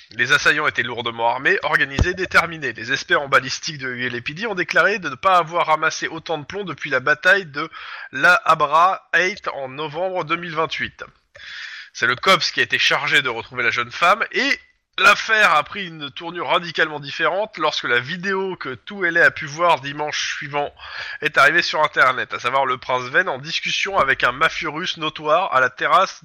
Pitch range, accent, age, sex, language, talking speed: 145-200 Hz, French, 20-39, male, French, 190 wpm